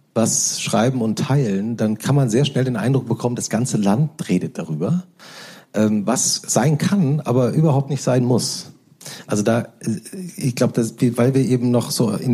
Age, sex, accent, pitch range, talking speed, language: 40-59, male, German, 115-155 Hz, 175 wpm, German